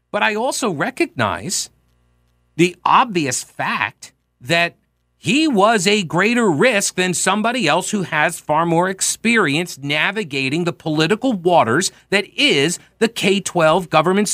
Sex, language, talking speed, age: male, English, 125 wpm, 50-69